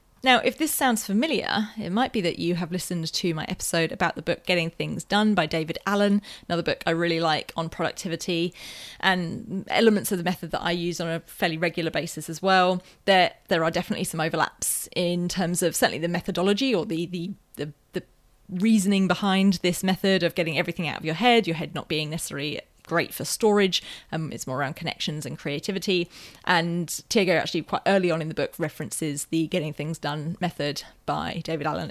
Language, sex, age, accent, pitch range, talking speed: English, female, 30-49, British, 160-195 Hz, 205 wpm